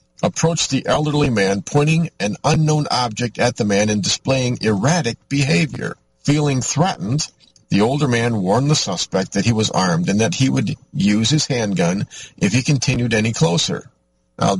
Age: 50-69